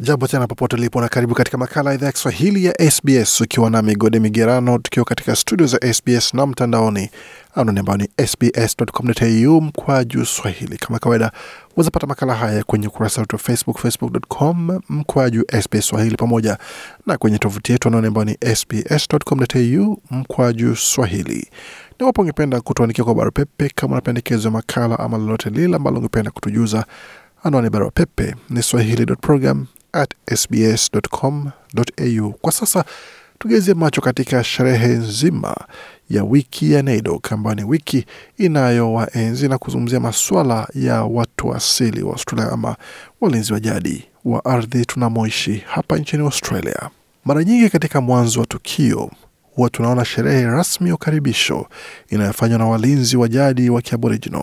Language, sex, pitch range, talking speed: Swahili, male, 115-140 Hz, 135 wpm